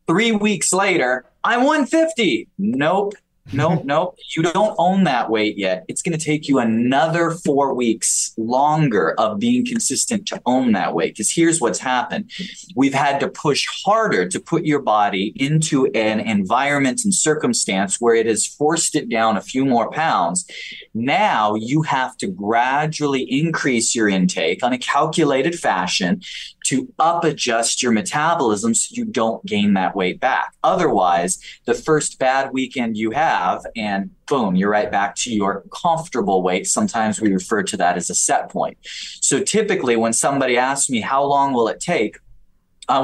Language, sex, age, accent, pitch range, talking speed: English, male, 20-39, American, 115-170 Hz, 165 wpm